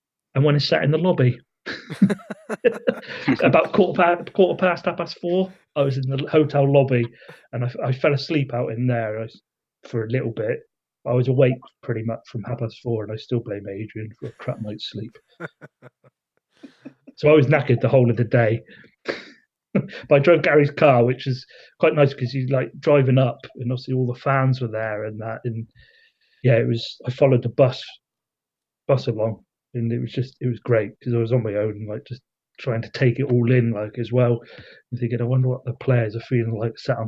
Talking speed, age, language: 210 wpm, 30-49, English